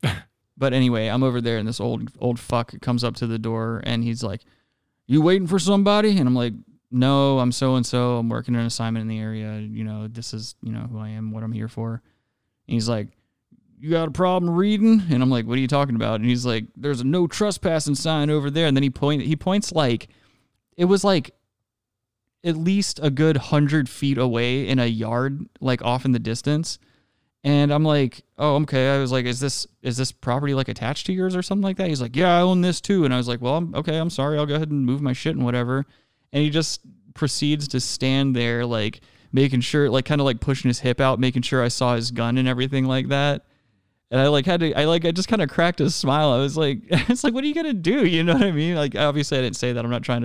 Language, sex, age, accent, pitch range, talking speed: English, male, 20-39, American, 120-150 Hz, 255 wpm